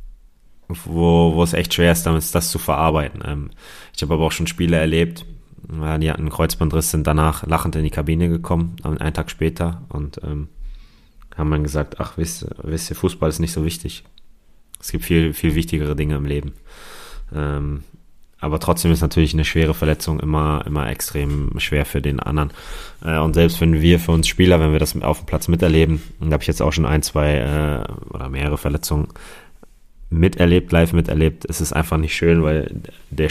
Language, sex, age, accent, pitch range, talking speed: German, male, 30-49, German, 75-80 Hz, 185 wpm